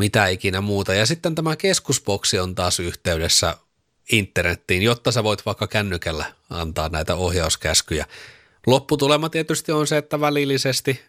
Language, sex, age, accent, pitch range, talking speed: Finnish, male, 30-49, native, 95-130 Hz, 135 wpm